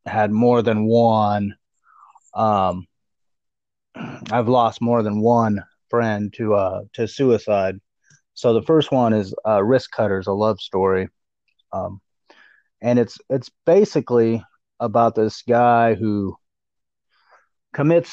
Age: 30-49